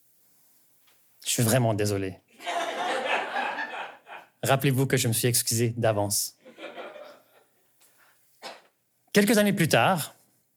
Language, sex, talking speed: French, male, 85 wpm